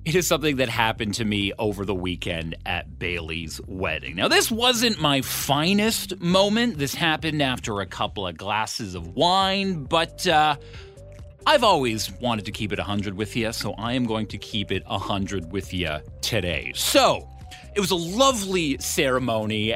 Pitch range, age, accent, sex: 95-150 Hz, 30-49, American, male